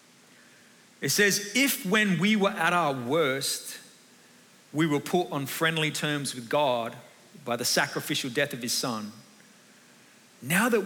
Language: English